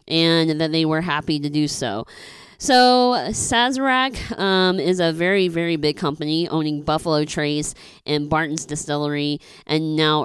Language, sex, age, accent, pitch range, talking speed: English, female, 20-39, American, 150-190 Hz, 145 wpm